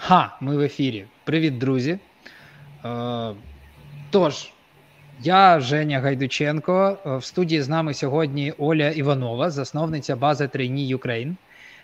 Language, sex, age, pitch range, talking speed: Ukrainian, male, 20-39, 130-160 Hz, 105 wpm